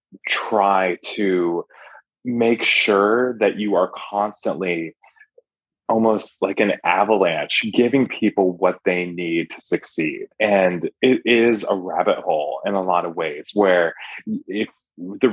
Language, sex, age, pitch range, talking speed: English, male, 20-39, 90-110 Hz, 130 wpm